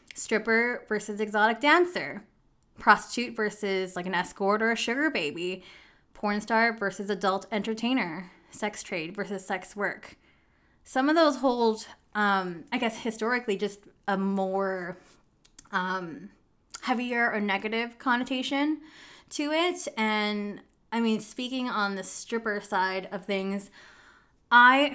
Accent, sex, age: American, female, 20-39